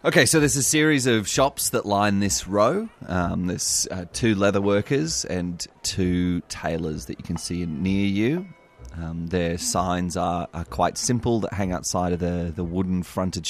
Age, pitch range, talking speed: 30-49, 85-100 Hz, 180 wpm